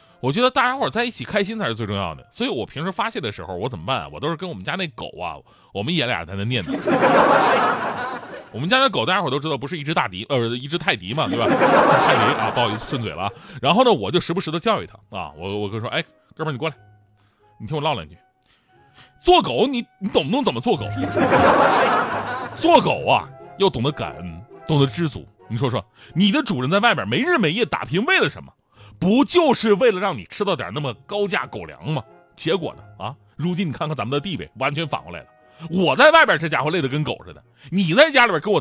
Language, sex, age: Chinese, male, 30-49